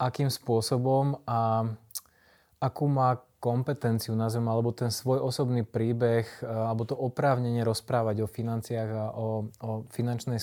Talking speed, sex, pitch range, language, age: 125 wpm, male, 115-130 Hz, Slovak, 20-39